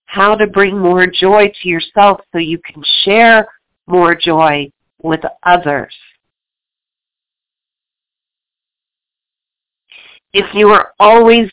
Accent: American